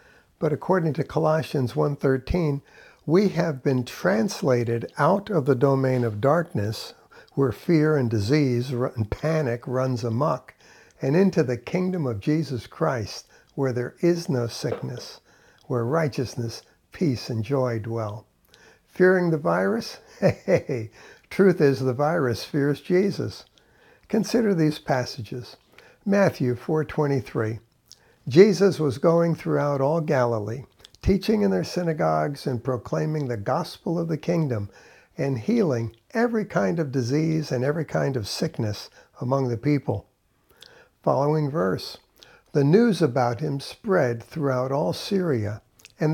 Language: English